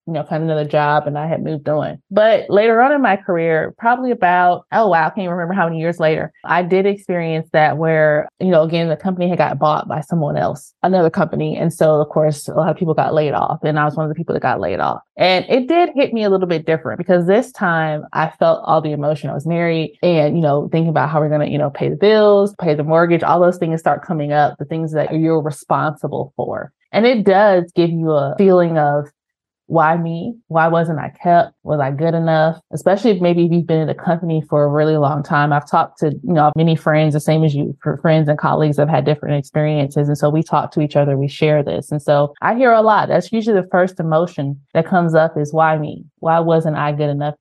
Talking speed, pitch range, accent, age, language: 250 wpm, 150-180 Hz, American, 20-39, English